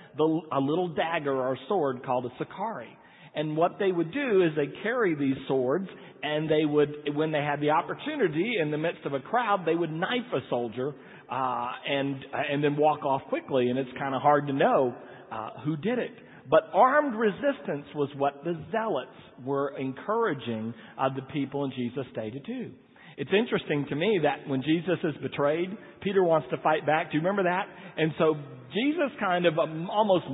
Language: English